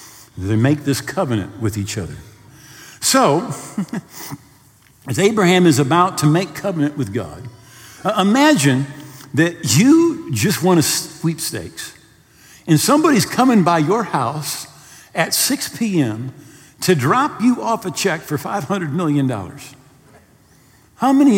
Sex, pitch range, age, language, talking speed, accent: male, 130-200 Hz, 50-69, English, 125 wpm, American